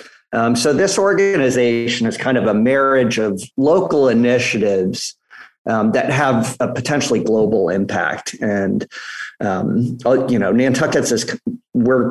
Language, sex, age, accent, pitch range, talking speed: English, male, 40-59, American, 105-125 Hz, 130 wpm